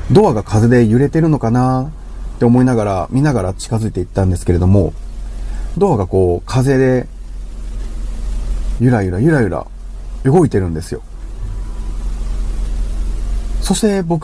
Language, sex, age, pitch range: Japanese, male, 30-49, 100-150 Hz